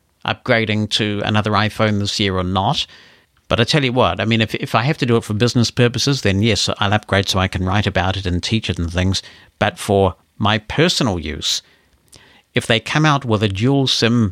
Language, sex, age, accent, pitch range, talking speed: English, male, 50-69, British, 100-125 Hz, 220 wpm